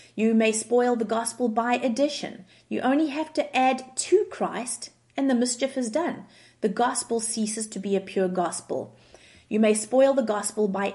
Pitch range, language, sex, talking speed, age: 190-245 Hz, English, female, 180 wpm, 30-49